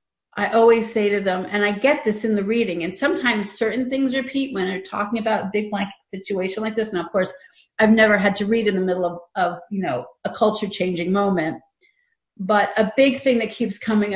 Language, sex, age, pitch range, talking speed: English, female, 40-59, 185-225 Hz, 225 wpm